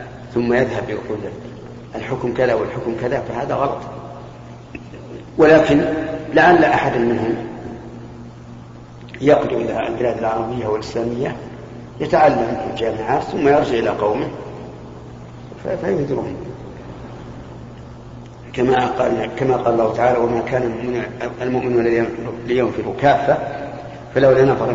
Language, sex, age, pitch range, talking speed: Arabic, male, 50-69, 110-125 Hz, 95 wpm